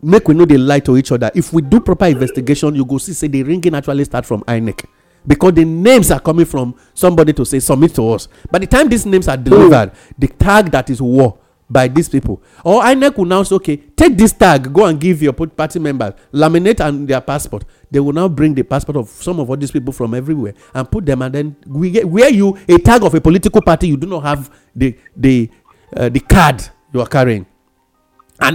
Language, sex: English, male